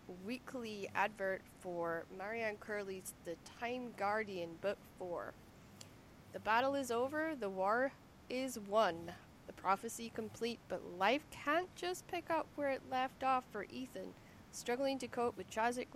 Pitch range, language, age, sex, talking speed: 200-270 Hz, English, 30-49, female, 145 wpm